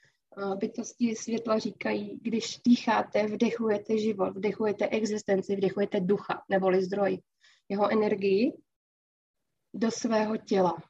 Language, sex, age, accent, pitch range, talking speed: Czech, female, 20-39, native, 205-240 Hz, 100 wpm